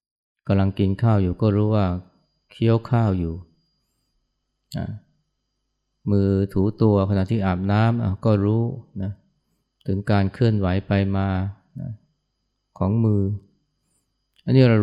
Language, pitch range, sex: Thai, 95-115 Hz, male